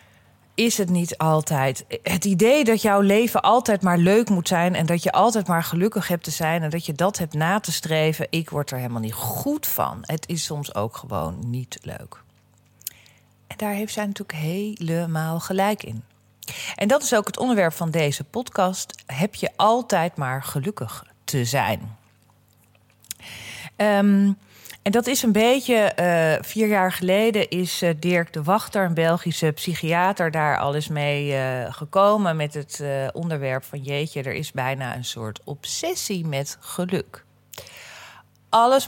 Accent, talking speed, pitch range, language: Dutch, 170 wpm, 135-190 Hz, Dutch